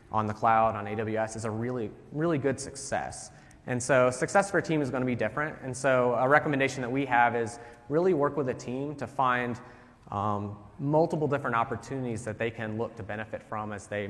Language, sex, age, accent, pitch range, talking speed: English, male, 30-49, American, 110-130 Hz, 210 wpm